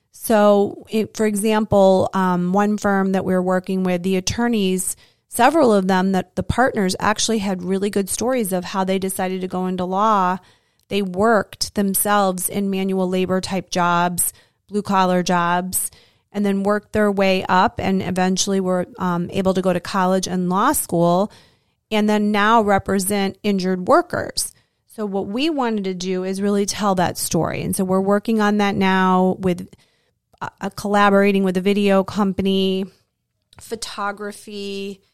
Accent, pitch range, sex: American, 185-210 Hz, female